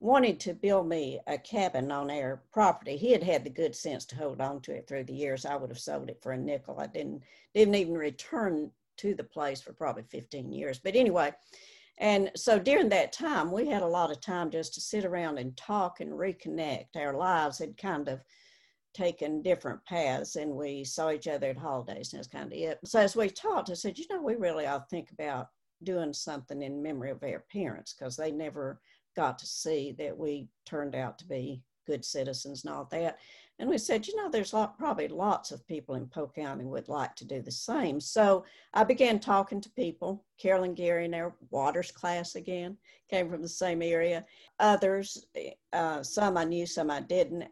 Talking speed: 210 wpm